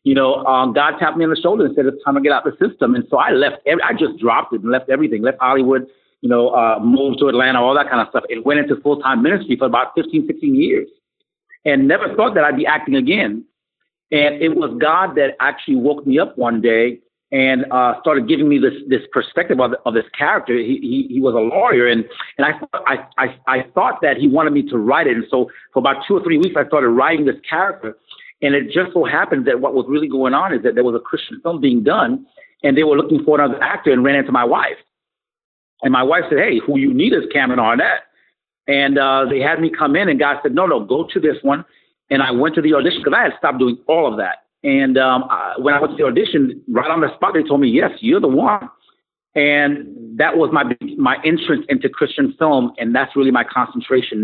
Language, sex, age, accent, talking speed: English, male, 50-69, American, 250 wpm